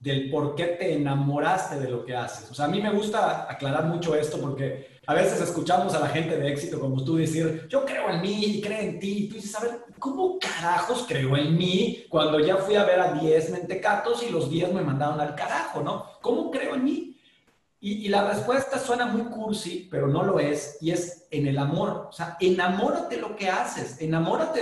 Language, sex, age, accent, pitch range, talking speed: Spanish, male, 40-59, Mexican, 150-205 Hz, 225 wpm